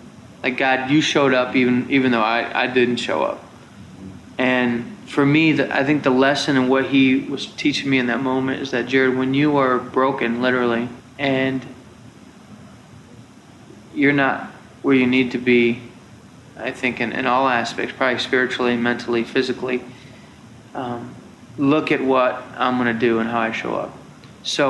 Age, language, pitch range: 30-49, English, 125-135 Hz